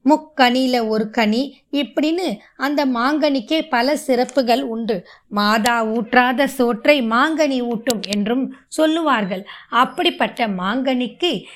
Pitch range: 210-275 Hz